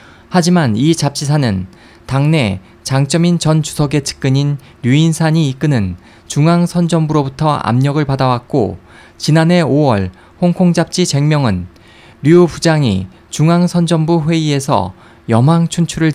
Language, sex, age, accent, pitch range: Korean, male, 20-39, native, 115-165 Hz